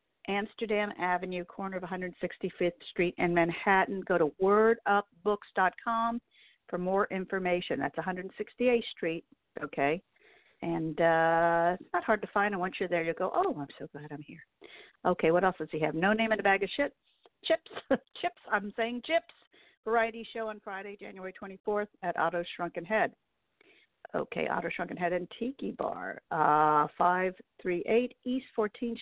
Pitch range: 175-225 Hz